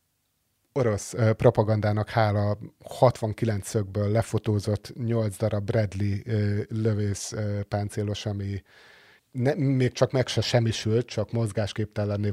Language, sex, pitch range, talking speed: Hungarian, male, 105-120 Hz, 105 wpm